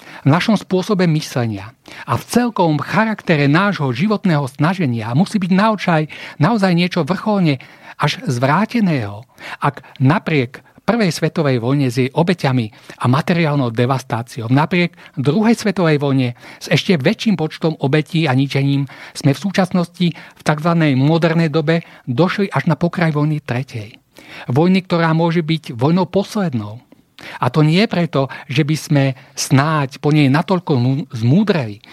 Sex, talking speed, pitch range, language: male, 135 wpm, 135-180 Hz, Slovak